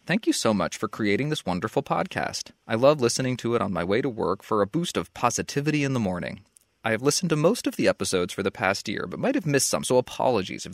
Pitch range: 100-140 Hz